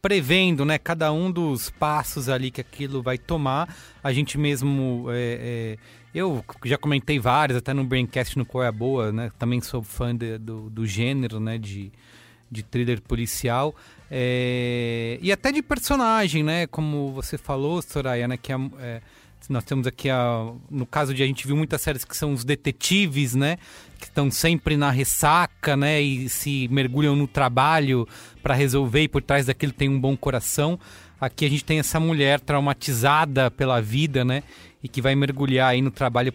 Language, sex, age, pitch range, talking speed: English, male, 30-49, 125-155 Hz, 180 wpm